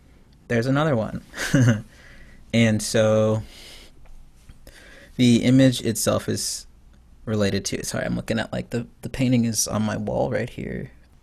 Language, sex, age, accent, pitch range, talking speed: English, male, 20-39, American, 100-115 Hz, 135 wpm